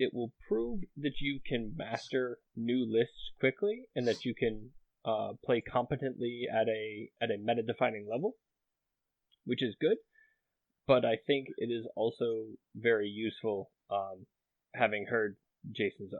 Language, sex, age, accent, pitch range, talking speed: English, male, 20-39, American, 110-140 Hz, 145 wpm